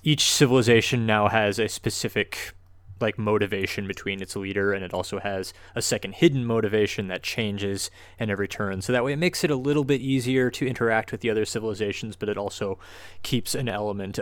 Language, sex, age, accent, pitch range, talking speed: English, male, 20-39, American, 100-120 Hz, 195 wpm